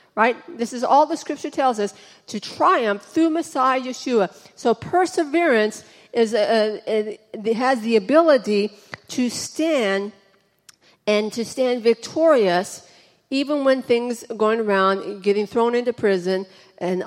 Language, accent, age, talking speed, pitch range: English, American, 40-59, 140 wpm, 210-255 Hz